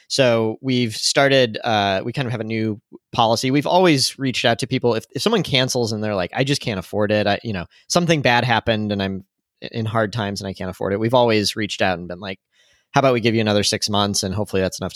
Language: English